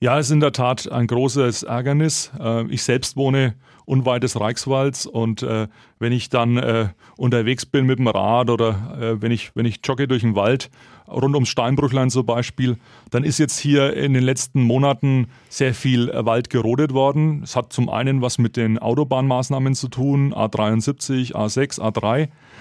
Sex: male